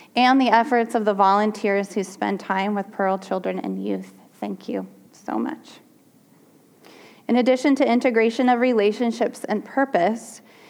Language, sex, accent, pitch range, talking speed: English, female, American, 195-235 Hz, 145 wpm